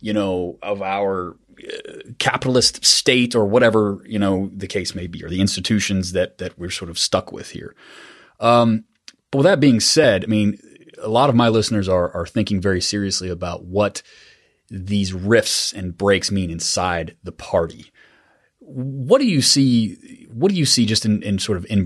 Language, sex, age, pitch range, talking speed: English, male, 30-49, 90-110 Hz, 185 wpm